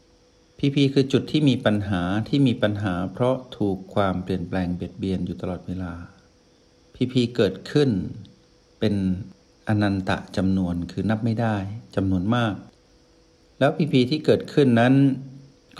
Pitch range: 95-125 Hz